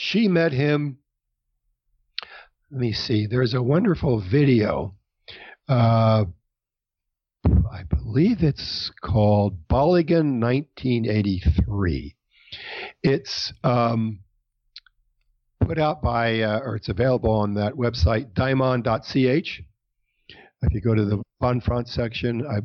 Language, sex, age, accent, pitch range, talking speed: English, male, 60-79, American, 110-155 Hz, 100 wpm